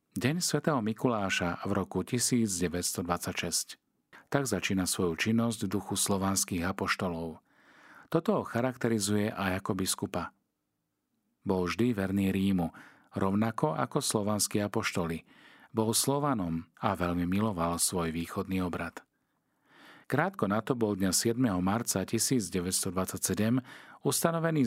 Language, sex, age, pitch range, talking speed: Slovak, male, 50-69, 95-115 Hz, 110 wpm